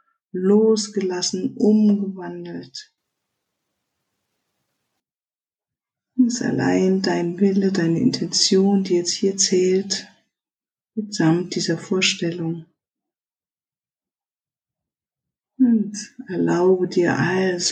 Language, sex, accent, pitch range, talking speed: German, female, German, 170-205 Hz, 65 wpm